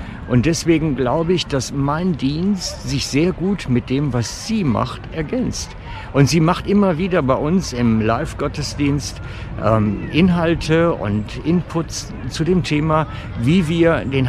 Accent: German